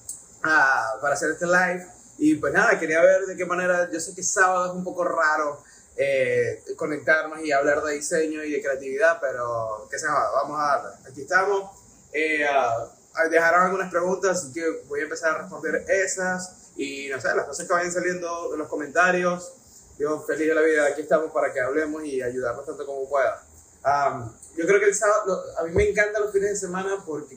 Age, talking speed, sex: 30-49, 205 wpm, male